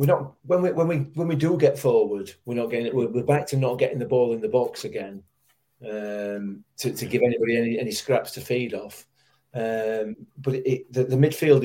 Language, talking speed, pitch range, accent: English, 215 wpm, 115-140 Hz, British